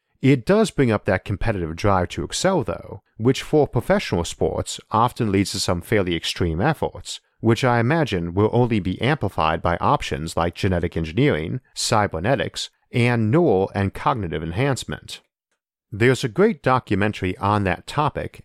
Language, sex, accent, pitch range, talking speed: English, male, American, 95-130 Hz, 150 wpm